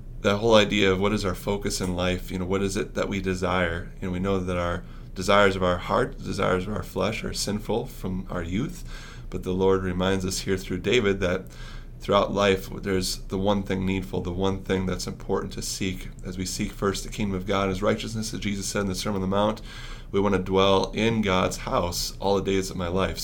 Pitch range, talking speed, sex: 95-100 Hz, 245 wpm, male